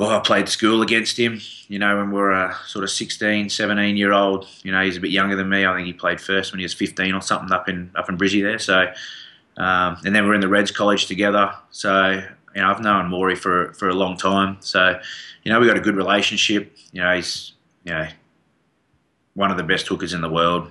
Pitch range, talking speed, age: 85-100 Hz, 250 wpm, 20-39